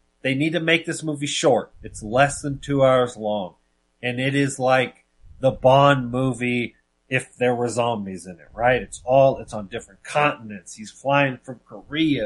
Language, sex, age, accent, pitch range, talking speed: English, male, 30-49, American, 105-145 Hz, 180 wpm